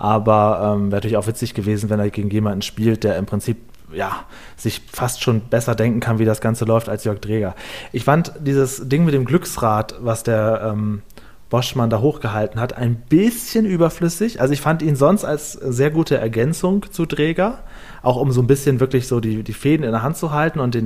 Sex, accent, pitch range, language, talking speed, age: male, German, 110-135 Hz, German, 215 wpm, 30-49